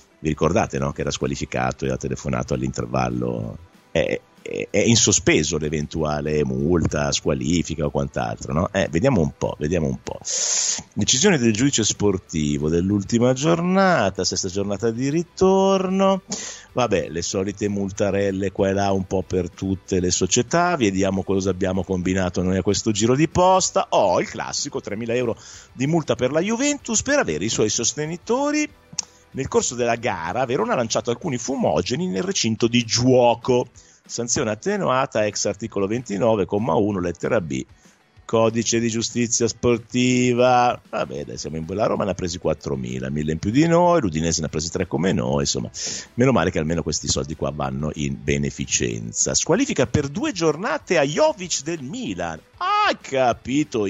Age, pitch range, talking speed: 50-69, 85-125 Hz, 160 wpm